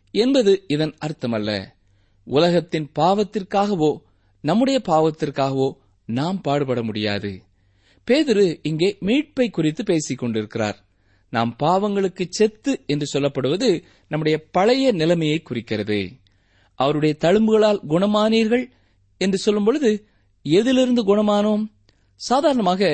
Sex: male